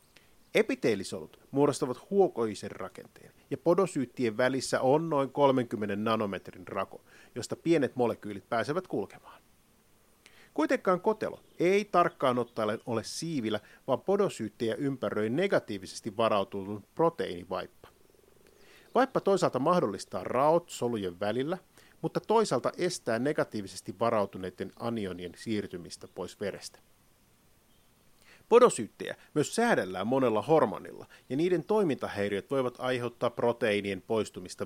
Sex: male